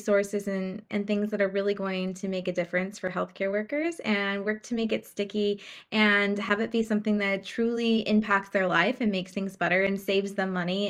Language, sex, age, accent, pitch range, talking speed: English, female, 20-39, American, 195-220 Hz, 215 wpm